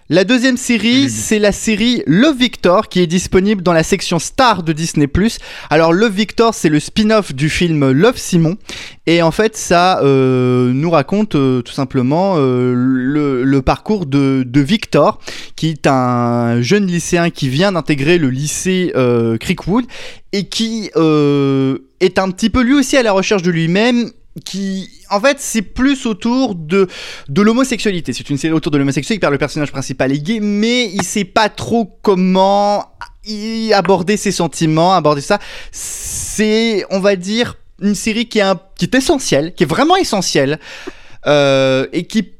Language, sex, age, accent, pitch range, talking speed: French, male, 20-39, French, 150-220 Hz, 175 wpm